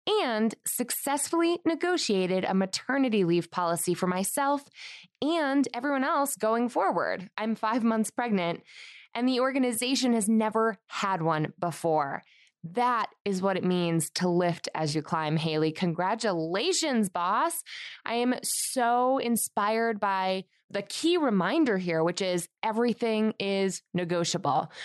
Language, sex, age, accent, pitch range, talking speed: English, female, 20-39, American, 175-245 Hz, 130 wpm